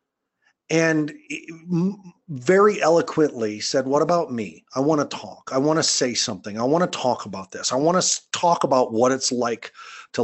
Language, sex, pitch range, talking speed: English, male, 125-165 Hz, 180 wpm